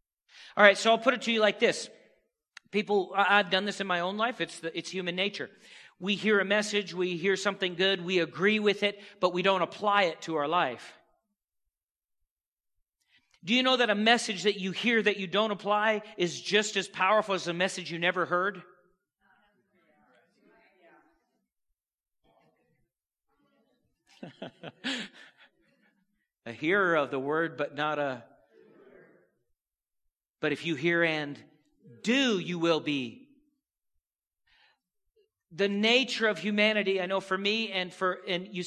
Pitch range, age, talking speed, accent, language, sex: 145-205 Hz, 40-59, 145 wpm, American, English, male